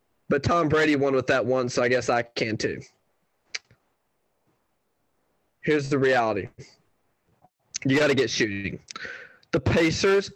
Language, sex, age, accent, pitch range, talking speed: English, male, 20-39, American, 135-180 Hz, 135 wpm